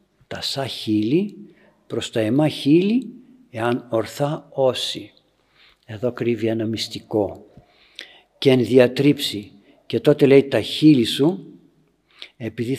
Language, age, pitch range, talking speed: Greek, 60-79, 115-165 Hz, 110 wpm